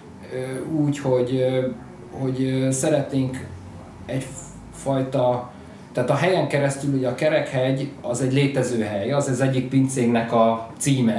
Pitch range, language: 125-140 Hz, Hungarian